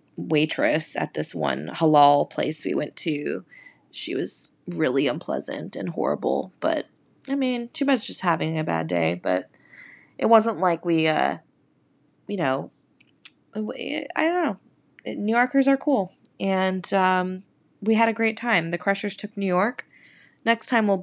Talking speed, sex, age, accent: 155 wpm, female, 20-39, American